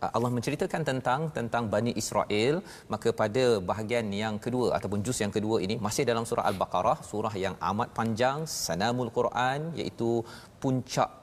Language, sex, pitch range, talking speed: Malayalam, male, 105-130 Hz, 150 wpm